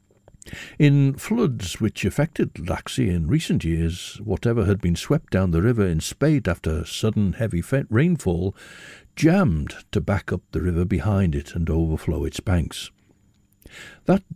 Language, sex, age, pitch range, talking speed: English, male, 60-79, 85-130 Hz, 145 wpm